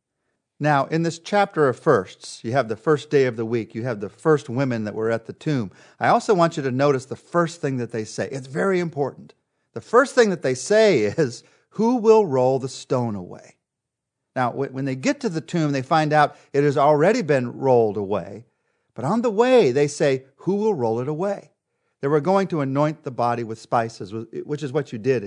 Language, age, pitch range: English, 40-59, 120-160 Hz